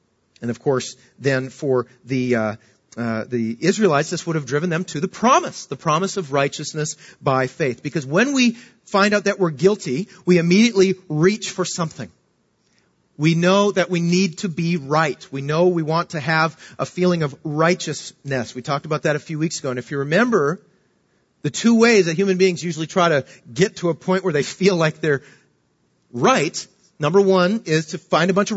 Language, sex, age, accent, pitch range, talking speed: English, male, 40-59, American, 140-185 Hz, 195 wpm